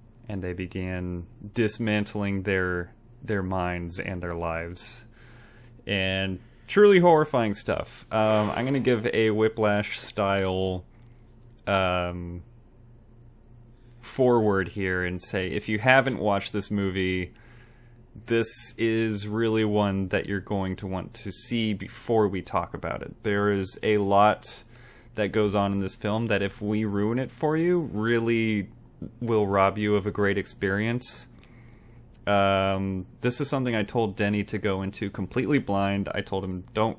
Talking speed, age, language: 145 wpm, 20-39, English